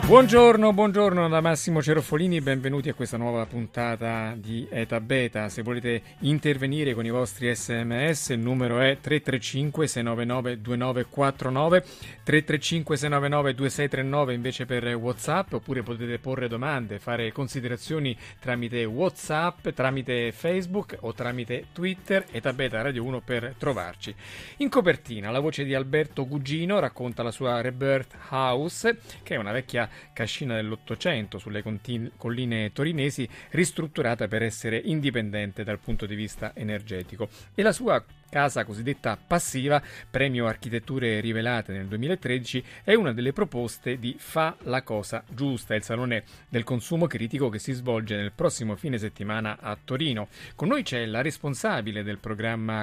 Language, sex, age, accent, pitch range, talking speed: Italian, male, 30-49, native, 115-150 Hz, 135 wpm